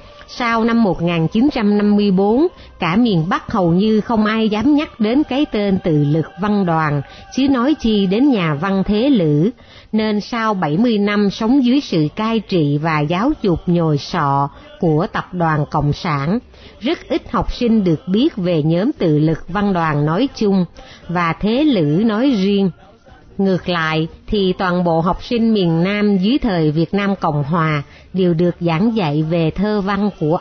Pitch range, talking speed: 165-225 Hz, 175 wpm